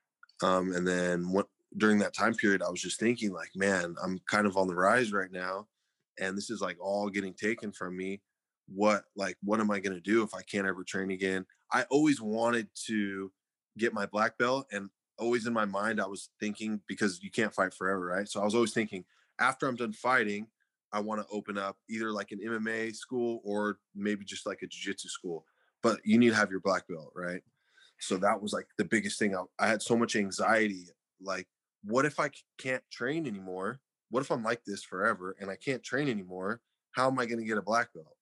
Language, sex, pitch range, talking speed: English, male, 95-115 Hz, 220 wpm